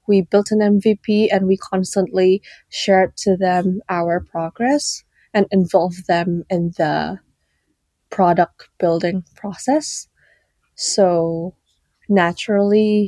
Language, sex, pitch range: English, female, 180-210 Hz